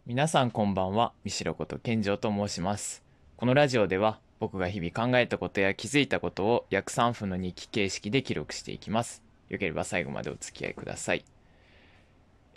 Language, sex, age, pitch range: Japanese, male, 20-39, 85-120 Hz